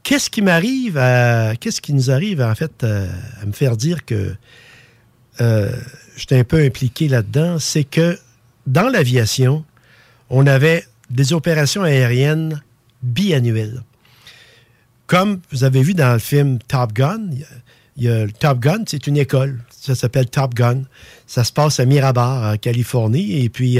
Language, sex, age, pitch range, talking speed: French, male, 50-69, 120-155 Hz, 165 wpm